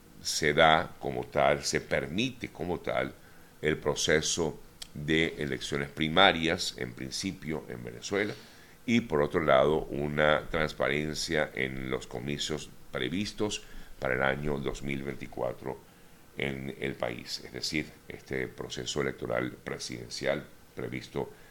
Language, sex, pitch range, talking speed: Spanish, male, 65-80 Hz, 115 wpm